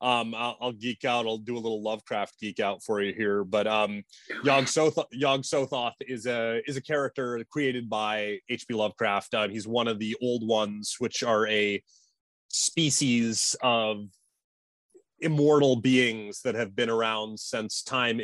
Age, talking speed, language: 30-49, 150 wpm, English